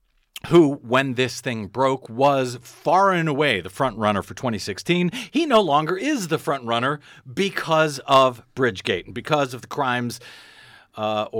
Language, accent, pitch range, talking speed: English, American, 110-150 Hz, 160 wpm